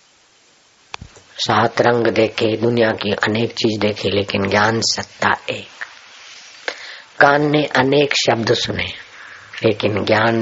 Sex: female